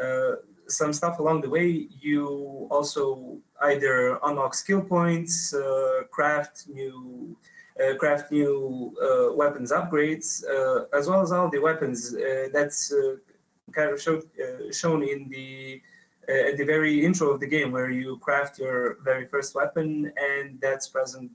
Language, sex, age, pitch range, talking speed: Italian, male, 20-39, 130-175 Hz, 155 wpm